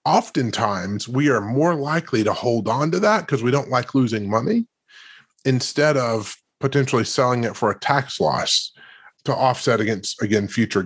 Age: 30-49